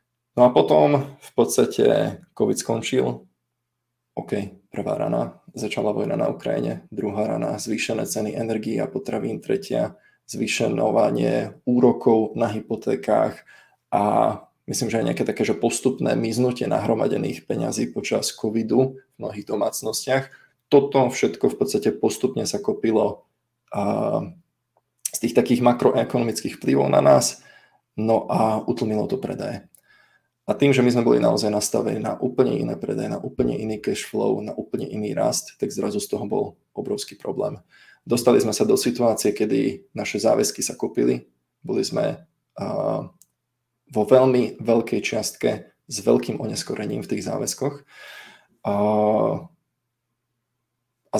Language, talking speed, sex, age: Czech, 135 wpm, male, 20-39